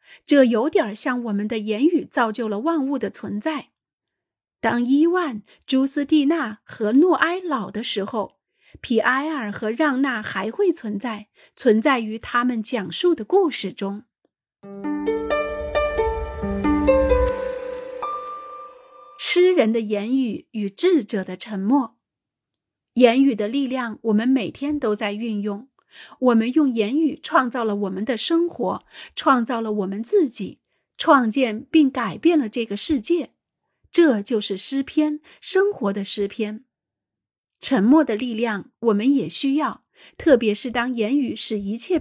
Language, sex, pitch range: Chinese, female, 215-295 Hz